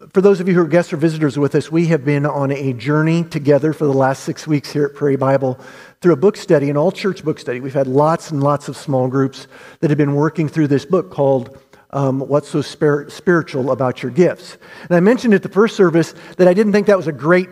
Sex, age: male, 50-69